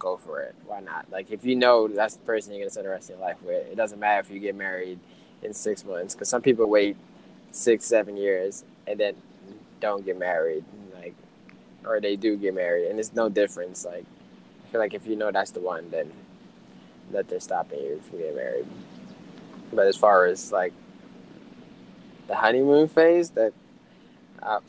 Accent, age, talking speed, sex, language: American, 10-29, 195 wpm, male, English